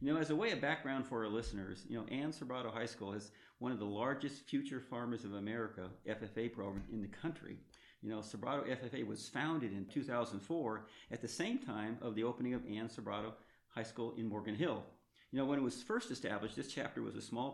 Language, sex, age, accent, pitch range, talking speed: English, male, 50-69, American, 105-125 Hz, 220 wpm